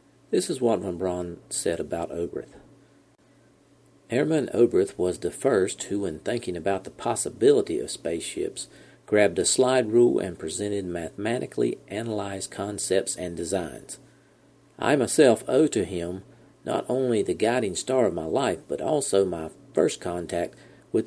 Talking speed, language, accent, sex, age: 145 wpm, English, American, male, 50-69